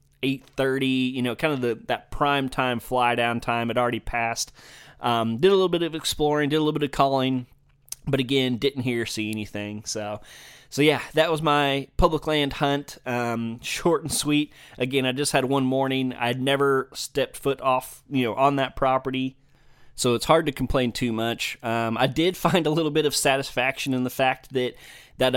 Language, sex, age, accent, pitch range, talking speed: English, male, 20-39, American, 120-140 Hz, 200 wpm